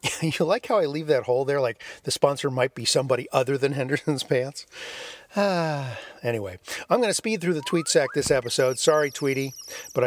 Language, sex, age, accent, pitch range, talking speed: English, male, 50-69, American, 125-190 Hz, 195 wpm